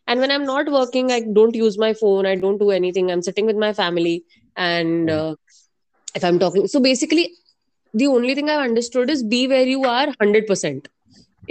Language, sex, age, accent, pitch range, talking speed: English, female, 20-39, Indian, 180-235 Hz, 195 wpm